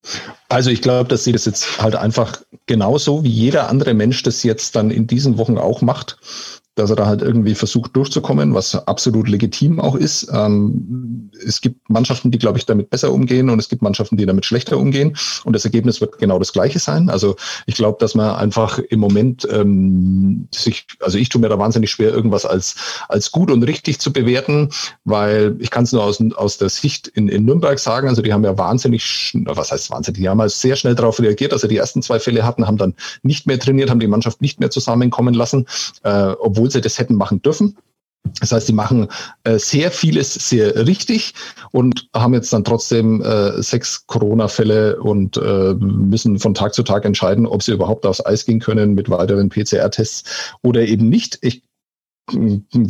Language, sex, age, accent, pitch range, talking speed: German, male, 40-59, German, 105-125 Hz, 205 wpm